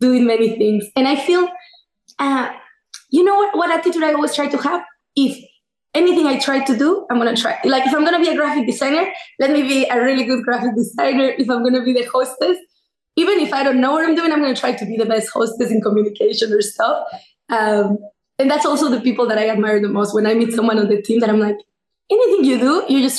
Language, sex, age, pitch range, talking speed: English, female, 20-39, 225-305 Hz, 255 wpm